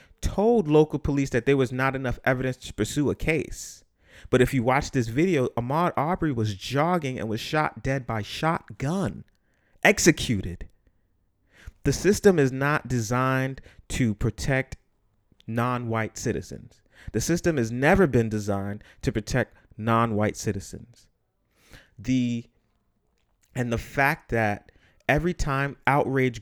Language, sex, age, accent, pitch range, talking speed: English, male, 30-49, American, 105-140 Hz, 130 wpm